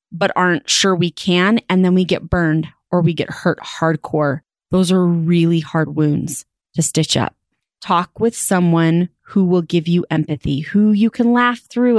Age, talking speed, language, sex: 30-49, 180 wpm, English, female